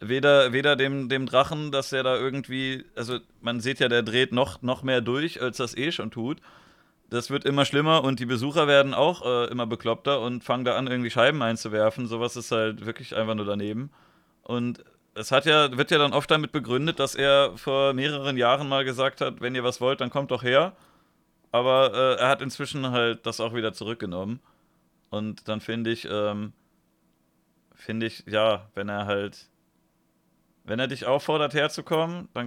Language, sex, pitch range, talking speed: German, male, 120-145 Hz, 190 wpm